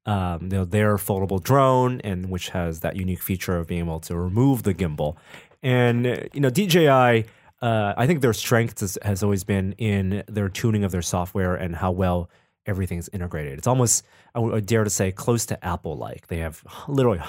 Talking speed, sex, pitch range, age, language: 190 wpm, male, 95-115 Hz, 30-49, English